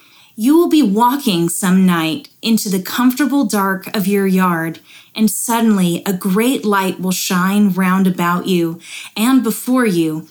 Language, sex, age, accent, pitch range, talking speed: English, female, 20-39, American, 185-235 Hz, 150 wpm